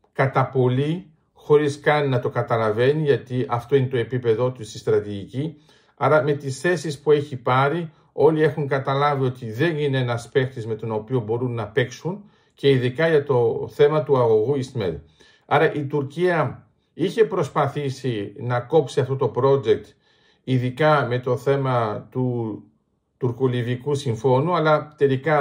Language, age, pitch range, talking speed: Greek, 50-69, 125-155 Hz, 150 wpm